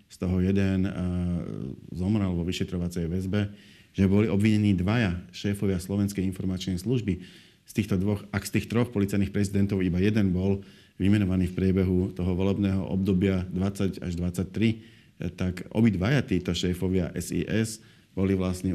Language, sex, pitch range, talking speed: Slovak, male, 95-105 Hz, 145 wpm